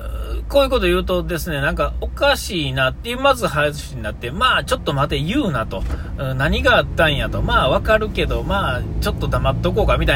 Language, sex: Japanese, male